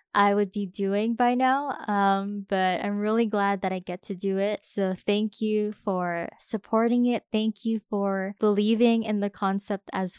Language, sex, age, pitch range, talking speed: English, female, 10-29, 195-235 Hz, 185 wpm